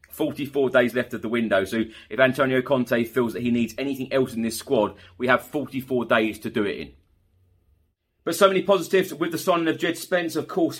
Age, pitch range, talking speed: 30-49, 115-135 Hz, 215 wpm